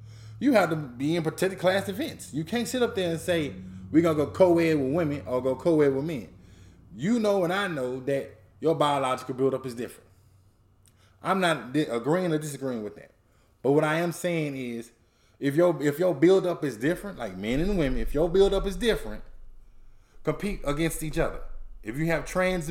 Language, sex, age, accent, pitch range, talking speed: English, male, 20-39, American, 130-190 Hz, 195 wpm